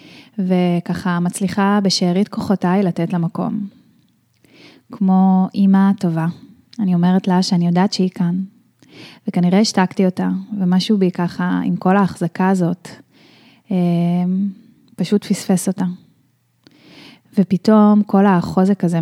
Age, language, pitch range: 10-29, Hebrew, 180-205 Hz